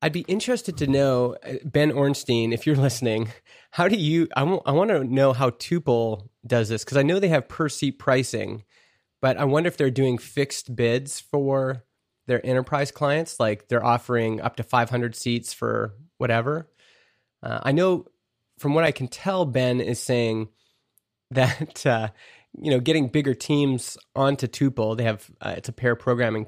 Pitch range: 115-140 Hz